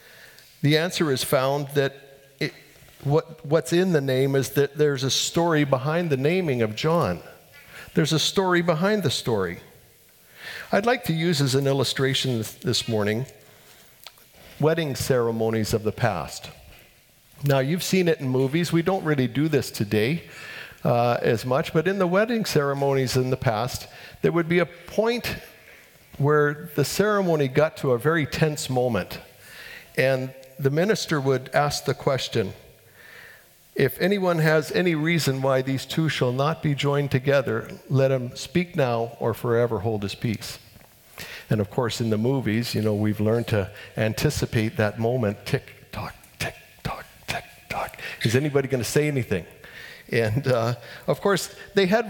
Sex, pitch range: male, 120-160 Hz